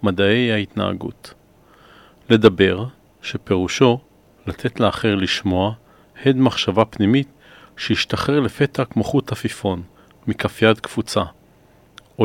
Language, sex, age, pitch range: Hebrew, male, 40-59, 100-125 Hz